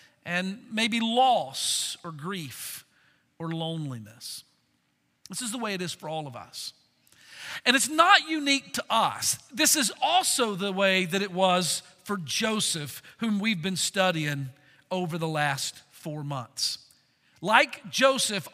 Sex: male